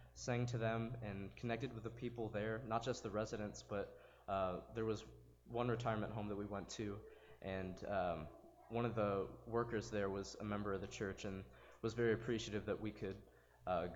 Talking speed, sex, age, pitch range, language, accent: 195 wpm, male, 20-39, 100-120 Hz, English, American